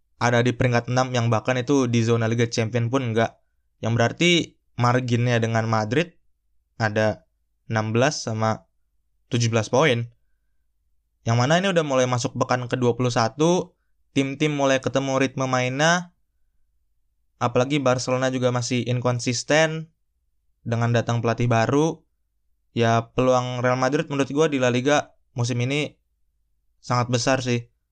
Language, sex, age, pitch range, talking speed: Indonesian, male, 20-39, 115-135 Hz, 125 wpm